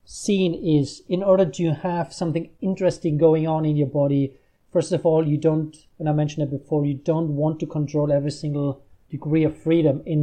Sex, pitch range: male, 140-175 Hz